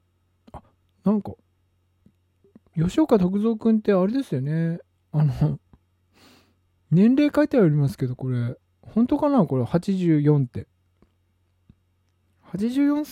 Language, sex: Japanese, male